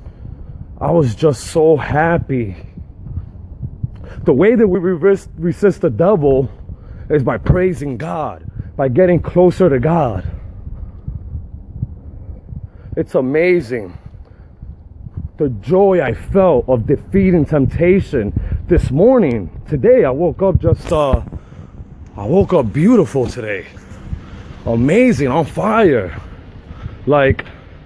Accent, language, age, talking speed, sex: American, English, 30-49, 100 wpm, male